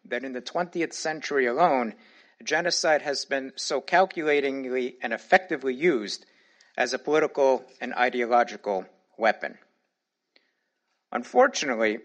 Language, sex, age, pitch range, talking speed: English, male, 50-69, 130-175 Hz, 105 wpm